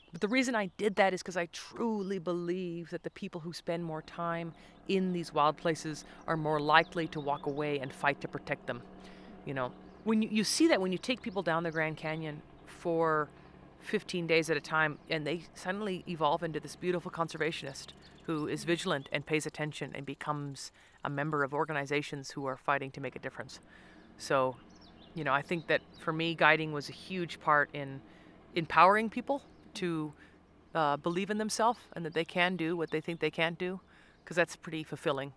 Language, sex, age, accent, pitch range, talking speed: English, female, 30-49, American, 140-170 Hz, 200 wpm